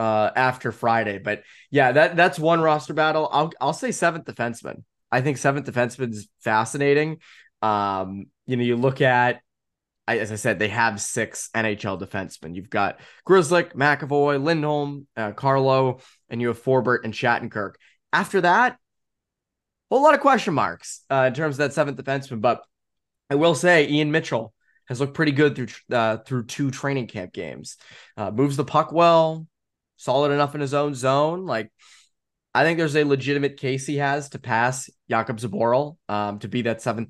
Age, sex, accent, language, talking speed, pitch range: 20-39, male, American, English, 175 wpm, 115-145 Hz